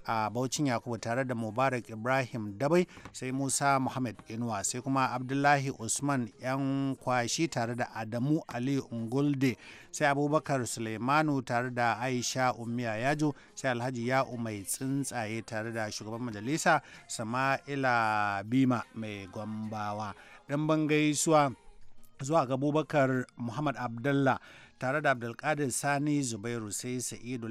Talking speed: 120 wpm